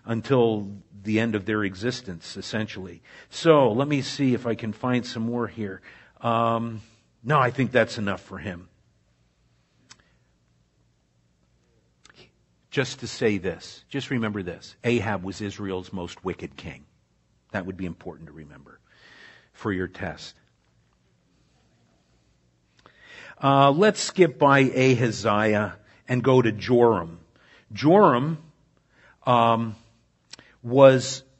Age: 50-69